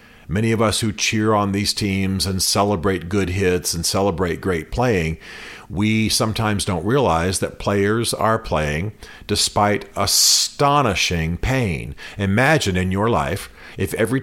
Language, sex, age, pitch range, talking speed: English, male, 50-69, 90-115 Hz, 140 wpm